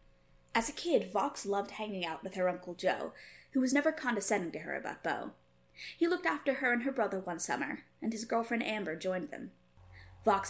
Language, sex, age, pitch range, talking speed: English, female, 20-39, 165-235 Hz, 200 wpm